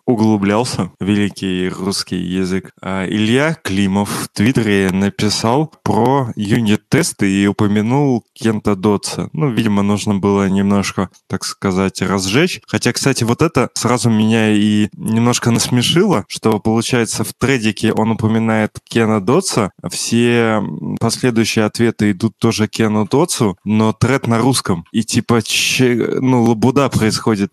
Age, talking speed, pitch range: 20-39, 120 wpm, 105-125 Hz